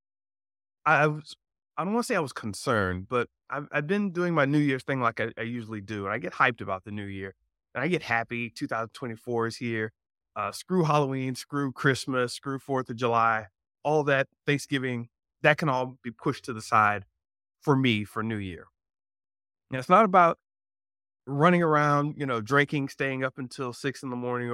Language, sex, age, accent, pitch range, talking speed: English, male, 30-49, American, 110-145 Hz, 195 wpm